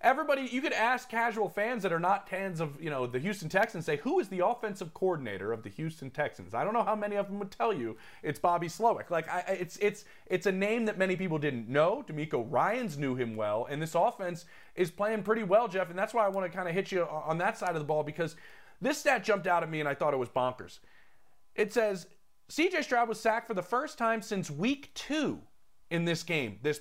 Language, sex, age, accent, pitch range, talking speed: English, male, 30-49, American, 155-210 Hz, 240 wpm